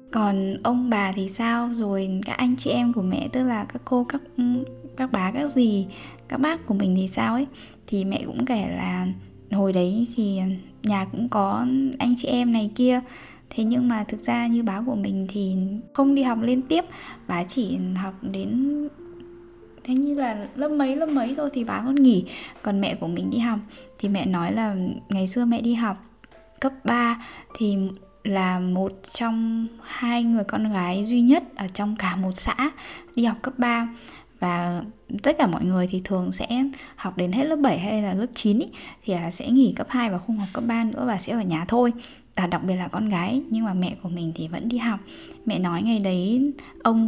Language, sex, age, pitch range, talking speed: Vietnamese, female, 10-29, 195-255 Hz, 210 wpm